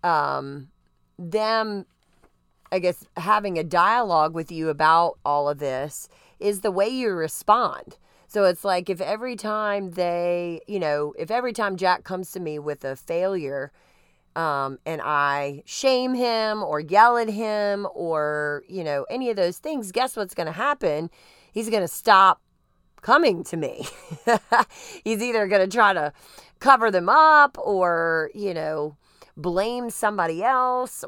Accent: American